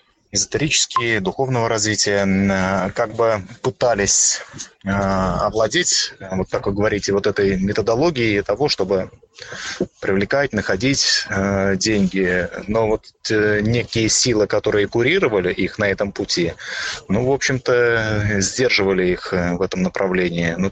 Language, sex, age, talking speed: Russian, male, 20-39, 120 wpm